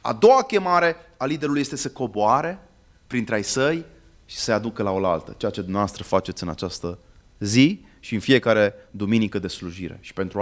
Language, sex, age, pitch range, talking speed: Romanian, male, 30-49, 100-140 Hz, 180 wpm